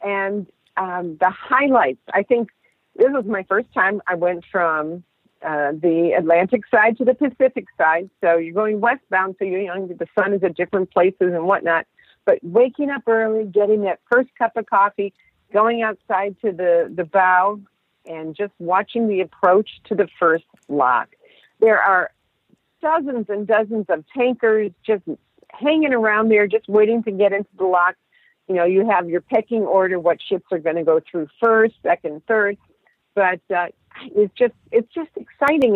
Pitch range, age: 180-240 Hz, 50-69